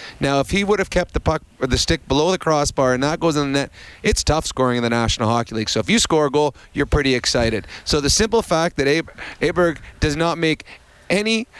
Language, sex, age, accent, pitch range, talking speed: English, male, 30-49, American, 120-150 Hz, 250 wpm